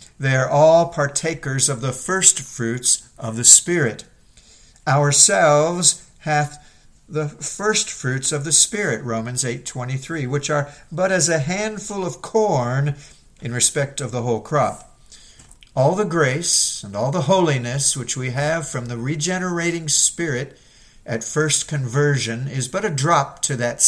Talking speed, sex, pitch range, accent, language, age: 145 wpm, male, 125-160 Hz, American, English, 50-69